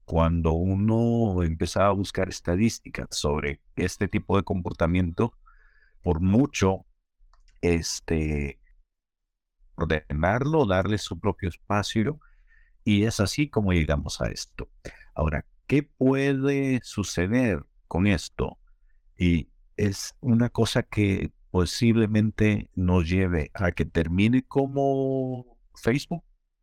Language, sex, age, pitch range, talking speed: Spanish, male, 50-69, 85-115 Hz, 100 wpm